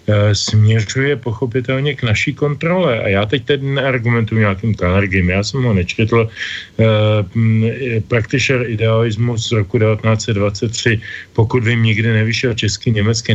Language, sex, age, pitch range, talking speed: Slovak, male, 40-59, 105-125 Hz, 115 wpm